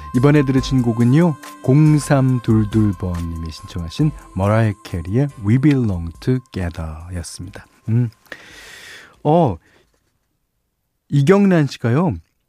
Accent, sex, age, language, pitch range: native, male, 40-59, Korean, 100-145 Hz